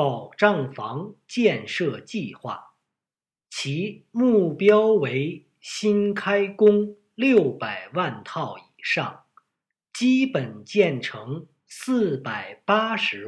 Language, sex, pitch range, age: Chinese, male, 140-230 Hz, 50-69